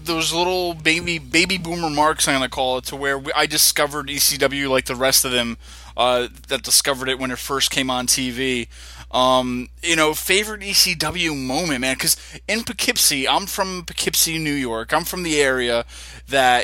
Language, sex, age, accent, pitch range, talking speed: English, male, 20-39, American, 120-160 Hz, 190 wpm